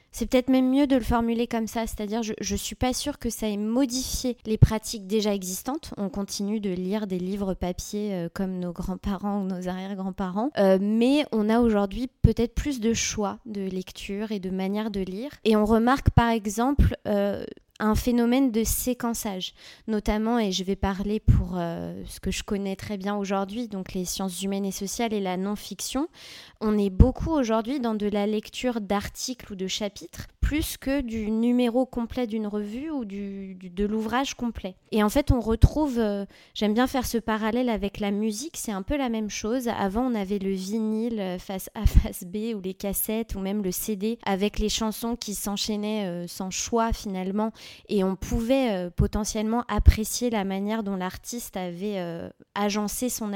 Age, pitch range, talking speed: 20-39, 195-230 Hz, 190 wpm